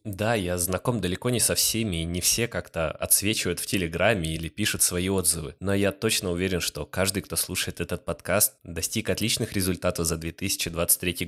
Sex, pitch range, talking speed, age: male, 85-105 Hz, 175 wpm, 20-39